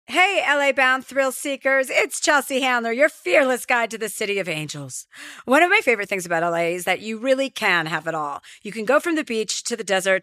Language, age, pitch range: English, 40-59, 195-260 Hz